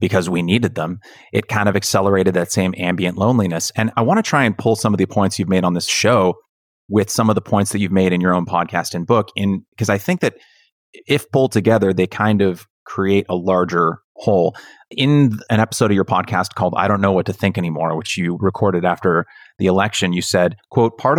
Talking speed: 230 wpm